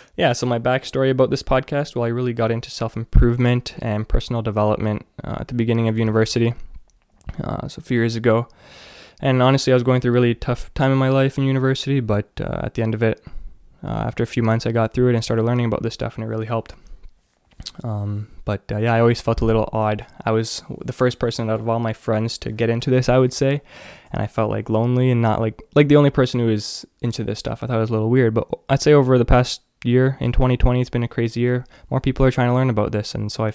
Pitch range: 110-125 Hz